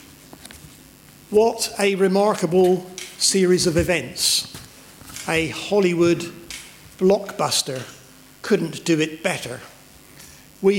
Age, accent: 50-69, British